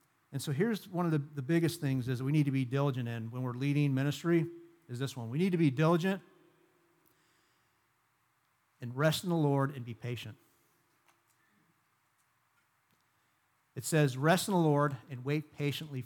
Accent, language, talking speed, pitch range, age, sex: American, English, 170 wpm, 130-170 Hz, 50-69, male